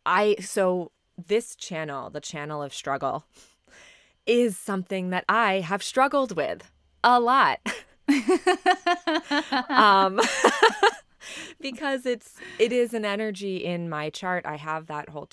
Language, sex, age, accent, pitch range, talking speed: English, female, 20-39, American, 150-205 Hz, 120 wpm